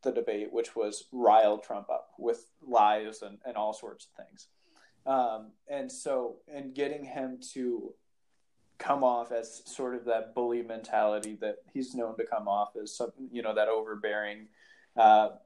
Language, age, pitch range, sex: English, 20-39, 115-155 Hz, male